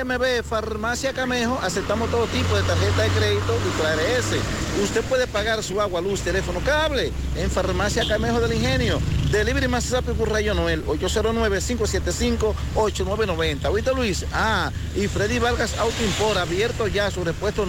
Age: 50-69